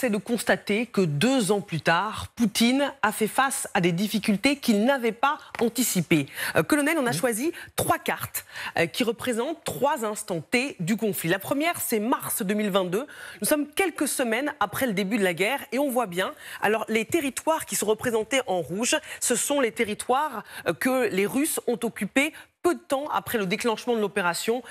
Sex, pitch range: female, 200-270 Hz